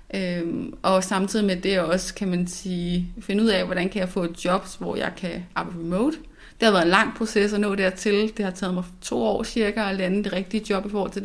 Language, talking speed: Danish, 250 wpm